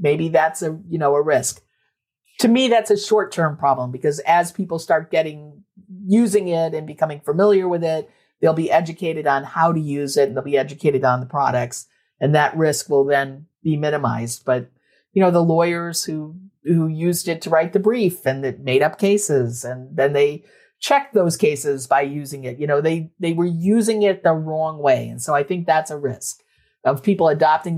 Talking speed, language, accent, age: 205 wpm, English, American, 50-69